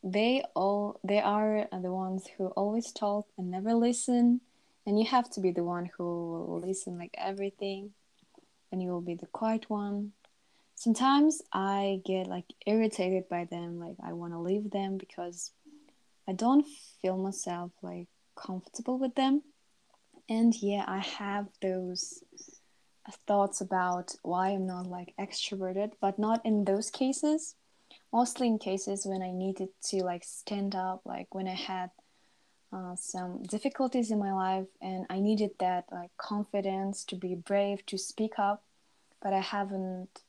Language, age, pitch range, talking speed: English, 20-39, 185-215 Hz, 155 wpm